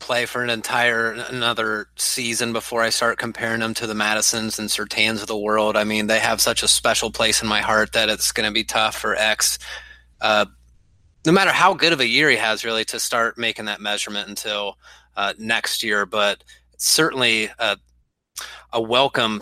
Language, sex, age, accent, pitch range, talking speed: English, male, 30-49, American, 105-115 Hz, 195 wpm